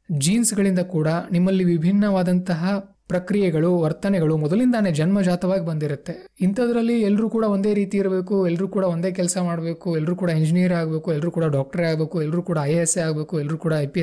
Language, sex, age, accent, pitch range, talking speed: Kannada, male, 20-39, native, 150-190 Hz, 150 wpm